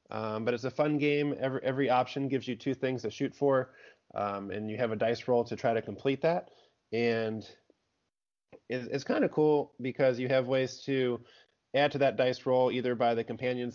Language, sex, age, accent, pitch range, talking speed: English, male, 20-39, American, 110-130 Hz, 205 wpm